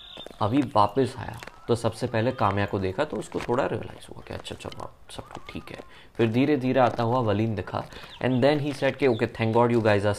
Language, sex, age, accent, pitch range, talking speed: Hindi, male, 20-39, native, 105-145 Hz, 220 wpm